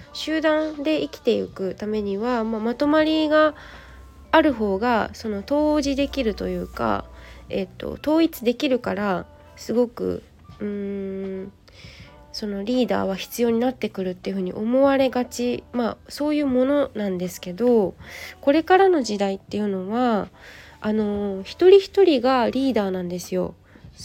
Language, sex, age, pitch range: Japanese, female, 20-39, 195-275 Hz